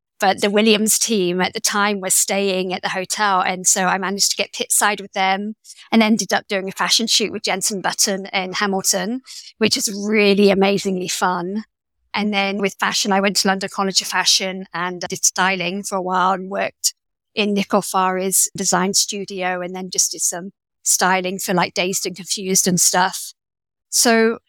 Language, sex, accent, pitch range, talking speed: English, female, British, 185-220 Hz, 190 wpm